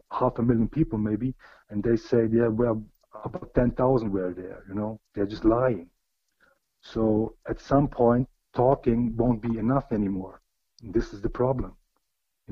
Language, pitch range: English, 110-130 Hz